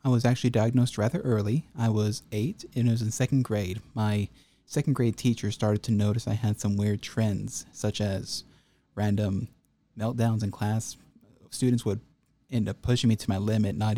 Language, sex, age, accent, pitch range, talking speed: English, male, 30-49, American, 105-135 Hz, 185 wpm